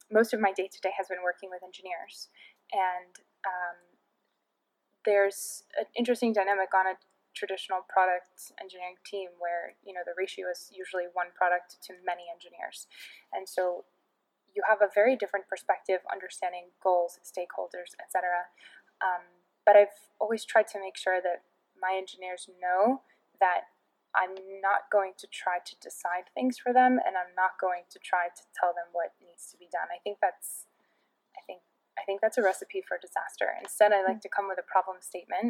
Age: 20-39